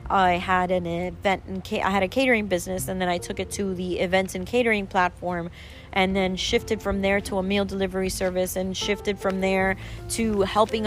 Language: English